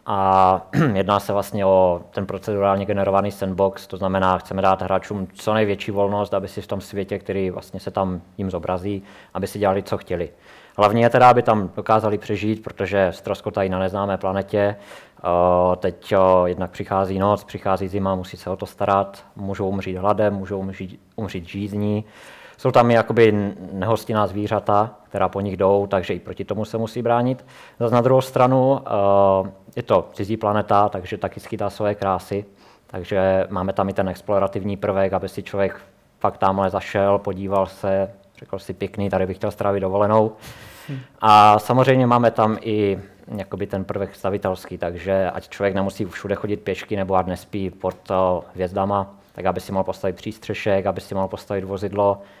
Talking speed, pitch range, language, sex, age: 165 wpm, 95-105 Hz, Czech, male, 20-39